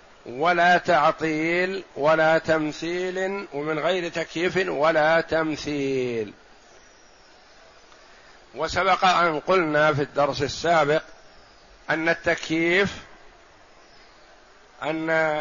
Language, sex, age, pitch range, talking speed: Arabic, male, 50-69, 155-175 Hz, 70 wpm